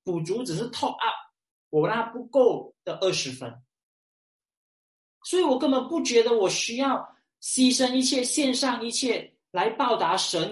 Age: 20-39